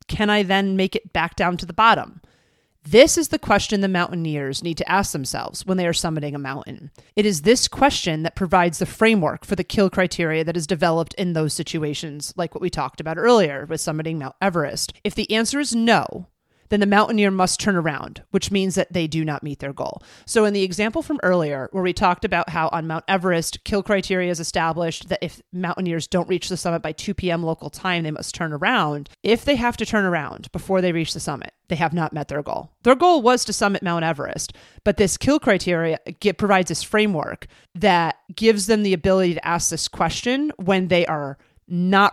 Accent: American